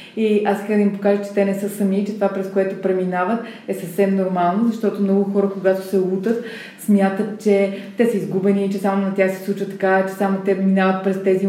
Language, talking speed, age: Bulgarian, 225 wpm, 20-39